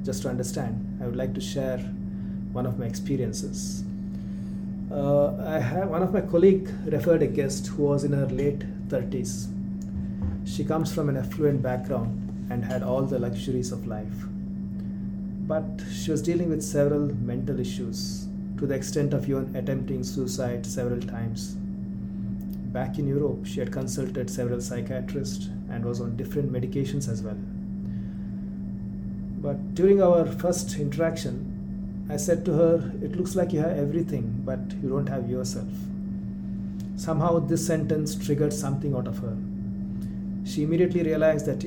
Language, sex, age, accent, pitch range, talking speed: English, male, 30-49, Indian, 65-100 Hz, 150 wpm